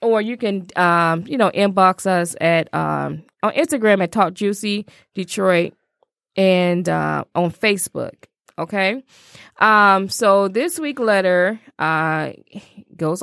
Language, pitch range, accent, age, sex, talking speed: English, 180-235 Hz, American, 20-39, female, 125 wpm